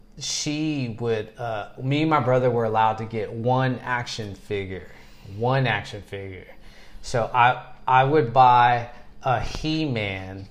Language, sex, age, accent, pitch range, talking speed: English, male, 30-49, American, 115-145 Hz, 135 wpm